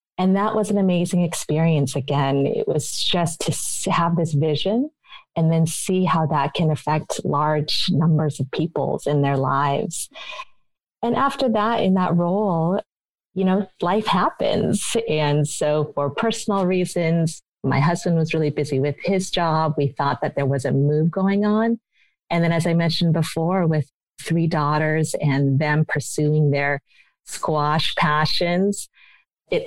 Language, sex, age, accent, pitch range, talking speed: English, female, 30-49, American, 145-175 Hz, 155 wpm